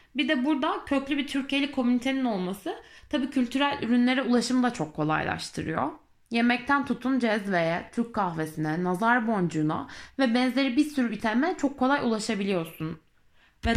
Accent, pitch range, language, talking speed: native, 200-265 Hz, Turkish, 135 wpm